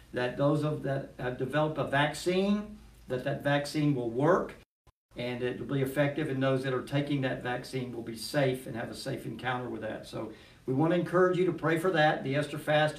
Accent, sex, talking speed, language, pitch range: American, male, 220 wpm, English, 130-160 Hz